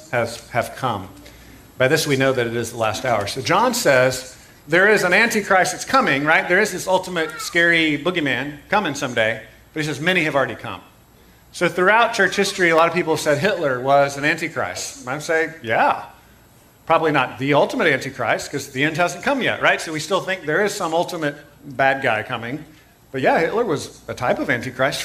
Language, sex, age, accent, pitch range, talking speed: English, male, 40-59, American, 130-170 Hz, 200 wpm